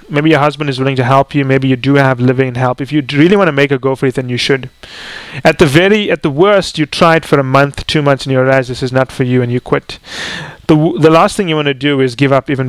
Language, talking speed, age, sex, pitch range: English, 310 wpm, 30-49, male, 130-155 Hz